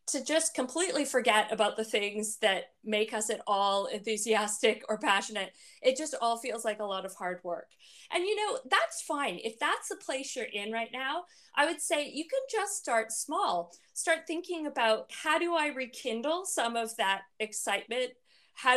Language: English